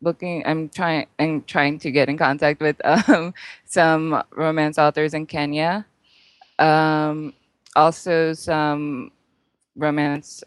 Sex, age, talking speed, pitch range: female, 20-39, 115 wpm, 140-175 Hz